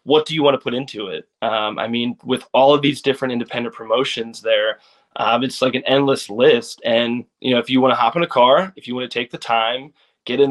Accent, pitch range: American, 120-145 Hz